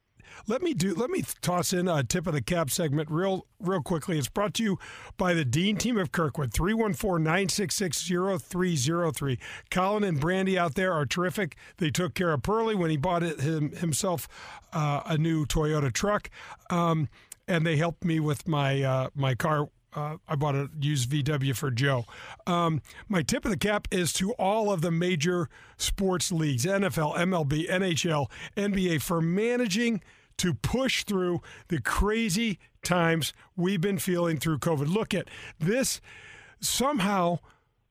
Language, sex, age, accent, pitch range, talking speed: English, male, 50-69, American, 150-190 Hz, 165 wpm